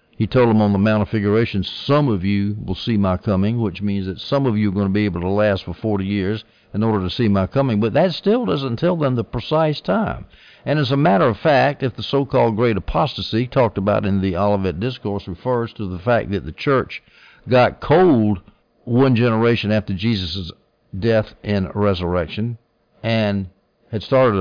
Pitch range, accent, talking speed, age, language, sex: 100-125 Hz, American, 200 wpm, 60-79, English, male